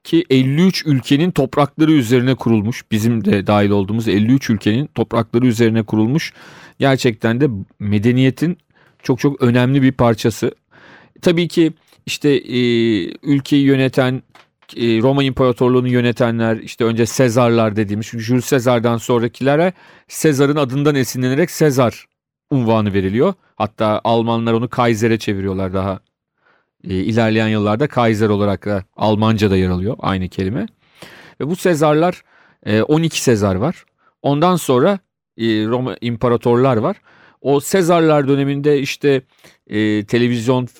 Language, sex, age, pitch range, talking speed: Turkish, male, 40-59, 115-140 Hz, 115 wpm